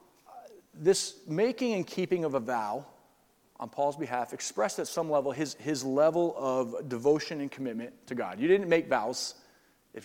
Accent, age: American, 40-59